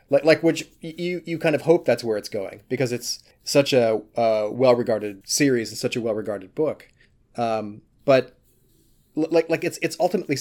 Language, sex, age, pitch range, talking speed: English, male, 30-49, 120-150 Hz, 185 wpm